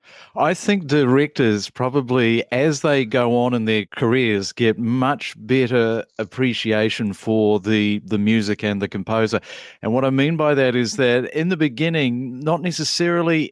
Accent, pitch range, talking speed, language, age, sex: Australian, 120-150 Hz, 155 wpm, English, 40-59, male